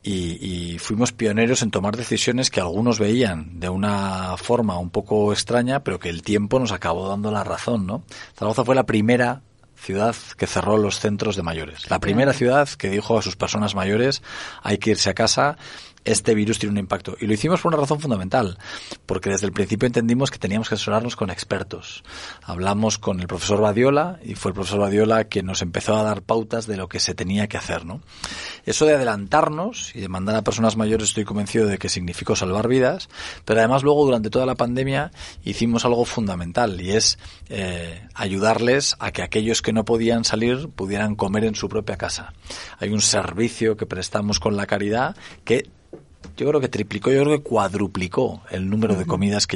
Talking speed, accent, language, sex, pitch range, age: 195 wpm, Spanish, Spanish, male, 95-115 Hz, 40-59